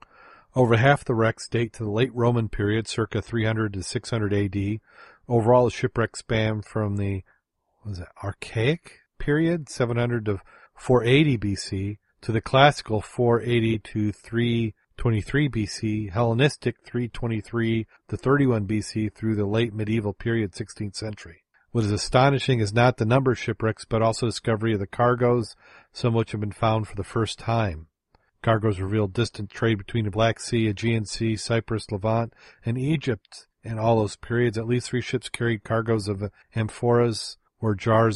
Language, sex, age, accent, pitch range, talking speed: English, male, 40-59, American, 105-120 Hz, 160 wpm